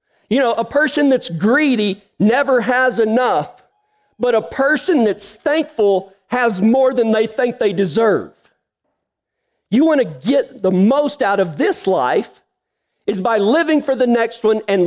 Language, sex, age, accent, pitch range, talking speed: English, male, 40-59, American, 195-245 Hz, 155 wpm